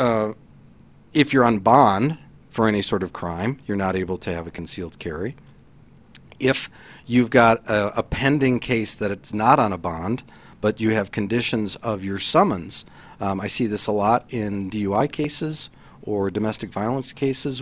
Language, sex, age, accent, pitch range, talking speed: English, male, 40-59, American, 100-125 Hz, 175 wpm